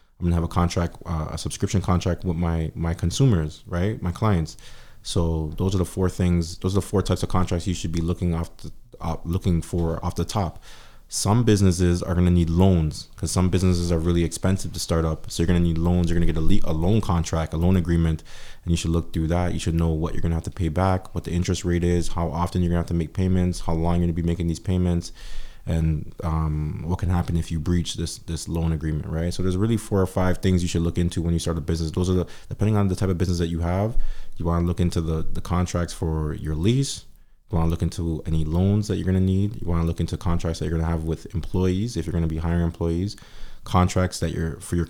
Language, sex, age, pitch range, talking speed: English, male, 20-39, 85-95 Hz, 275 wpm